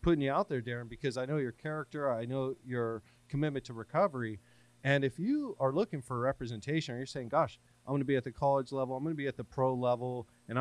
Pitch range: 115-140 Hz